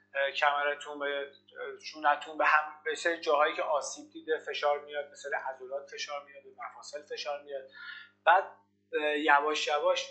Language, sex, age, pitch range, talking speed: Persian, male, 30-49, 135-170 Hz, 135 wpm